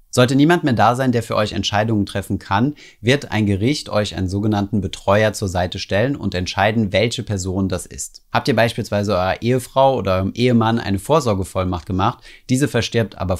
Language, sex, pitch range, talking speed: German, male, 95-120 Hz, 185 wpm